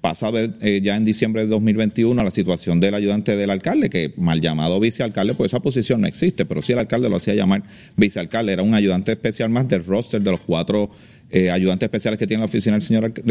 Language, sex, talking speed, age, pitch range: Spanish, male, 235 wpm, 30-49, 100-140 Hz